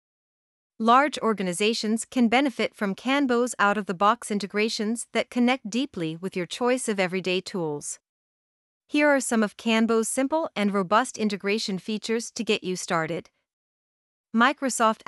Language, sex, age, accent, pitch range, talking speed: English, female, 40-59, American, 190-235 Hz, 125 wpm